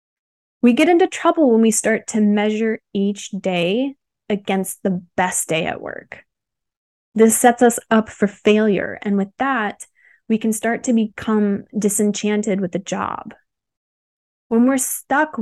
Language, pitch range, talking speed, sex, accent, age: English, 200-240 Hz, 150 wpm, female, American, 20-39